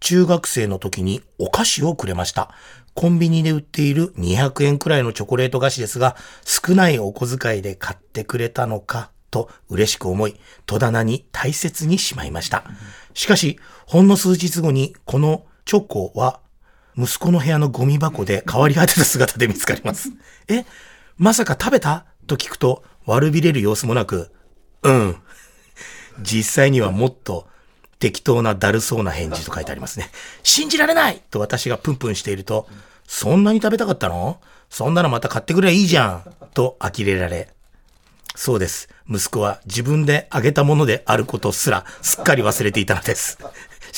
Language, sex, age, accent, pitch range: Japanese, male, 40-59, native, 110-165 Hz